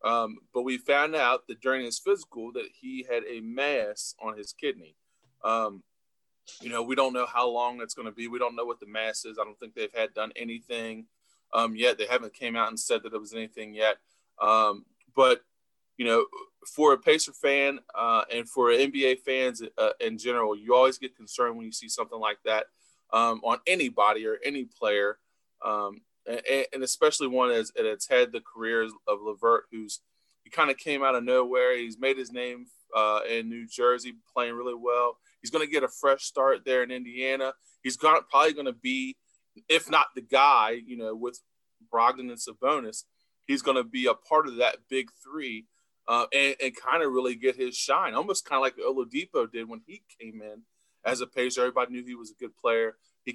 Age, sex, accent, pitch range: 20-39, male, American, 115-150 Hz